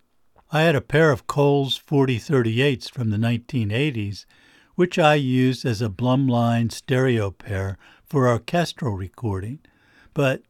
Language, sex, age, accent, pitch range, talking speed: English, male, 60-79, American, 110-140 Hz, 125 wpm